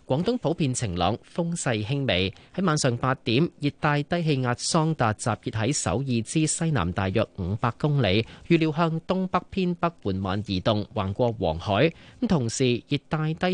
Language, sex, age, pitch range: Chinese, male, 30-49, 105-150 Hz